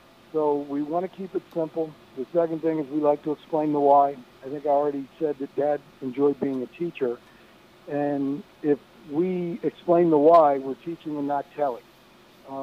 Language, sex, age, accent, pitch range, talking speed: English, male, 60-79, American, 140-160 Hz, 185 wpm